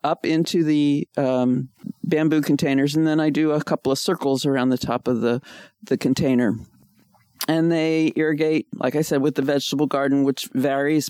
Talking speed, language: 180 wpm, English